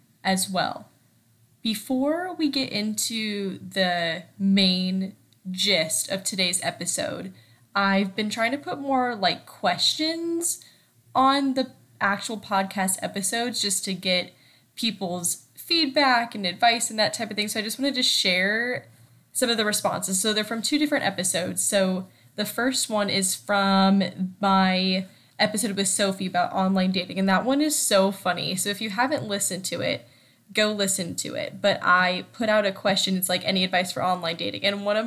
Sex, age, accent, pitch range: female, 10-29, American, 185-235 Hz